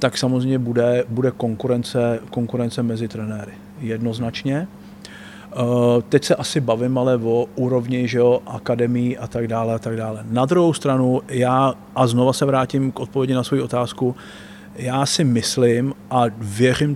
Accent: native